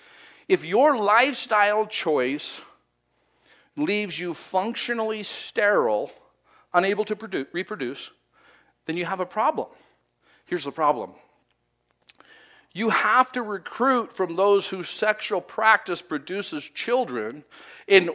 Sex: male